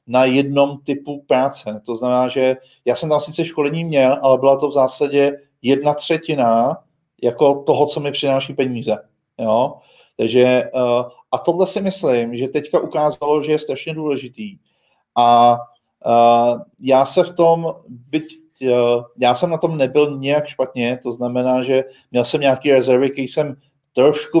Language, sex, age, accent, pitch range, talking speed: Czech, male, 40-59, native, 125-145 Hz, 150 wpm